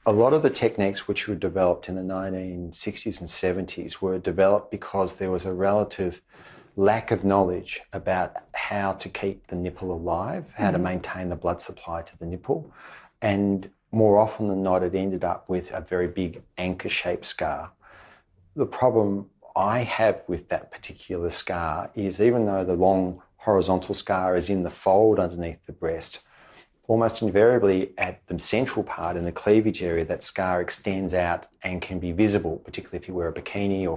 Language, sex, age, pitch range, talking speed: English, male, 40-59, 90-100 Hz, 175 wpm